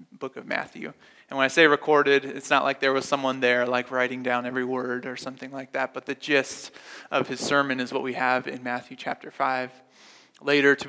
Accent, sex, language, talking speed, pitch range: American, male, English, 220 wpm, 125-140 Hz